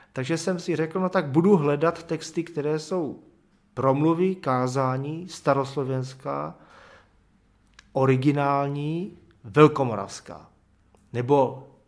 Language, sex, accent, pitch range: Czech, male, native, 115-150 Hz